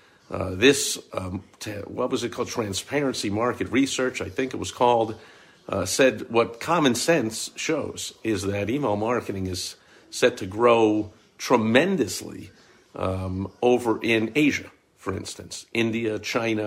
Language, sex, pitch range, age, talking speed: English, male, 95-110 Hz, 50-69, 135 wpm